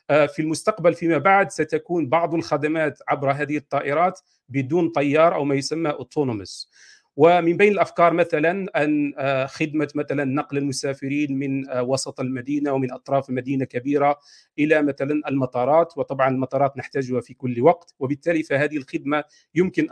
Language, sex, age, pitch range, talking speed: Arabic, male, 40-59, 135-155 Hz, 135 wpm